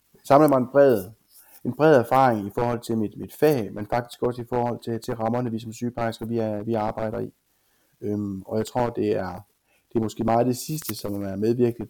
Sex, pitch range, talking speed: male, 110-125 Hz, 215 wpm